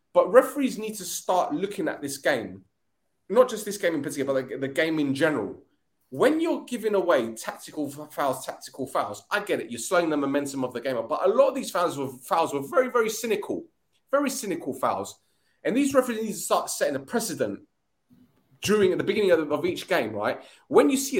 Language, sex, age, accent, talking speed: English, male, 30-49, British, 205 wpm